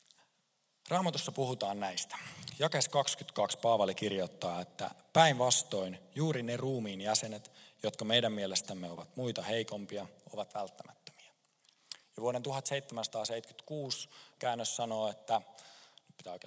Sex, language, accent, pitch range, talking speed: male, Finnish, native, 100-135 Hz, 100 wpm